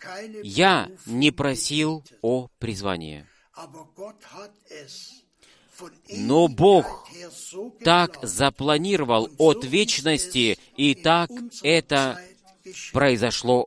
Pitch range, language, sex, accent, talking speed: 120-175 Hz, Russian, male, native, 65 wpm